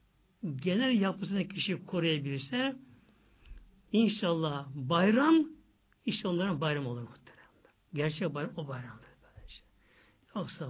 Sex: male